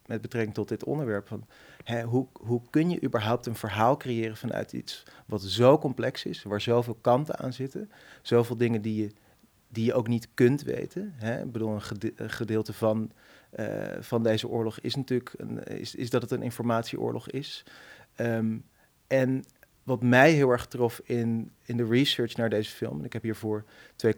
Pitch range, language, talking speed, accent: 110-125 Hz, Dutch, 190 wpm, Dutch